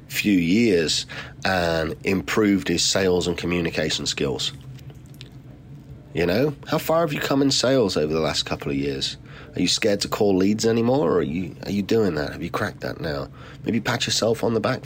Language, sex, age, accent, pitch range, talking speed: English, male, 40-59, British, 105-140 Hz, 200 wpm